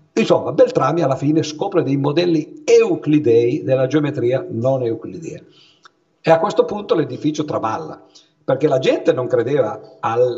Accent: native